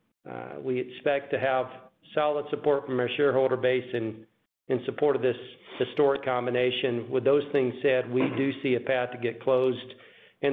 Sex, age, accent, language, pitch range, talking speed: male, 50-69, American, English, 130-150 Hz, 175 wpm